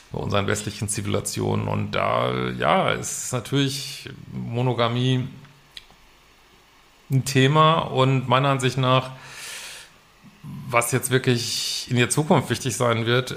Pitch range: 110-130 Hz